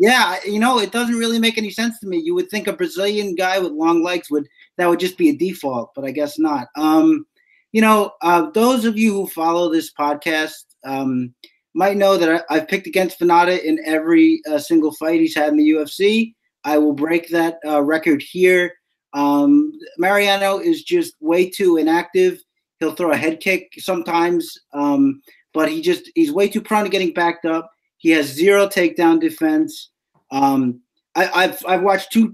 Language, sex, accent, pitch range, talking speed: English, male, American, 160-220 Hz, 190 wpm